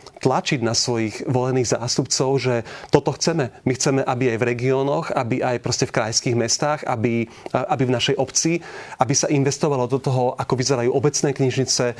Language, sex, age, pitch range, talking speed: Slovak, male, 30-49, 125-150 Hz, 165 wpm